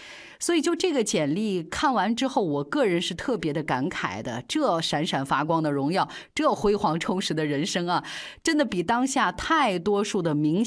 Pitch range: 155-240 Hz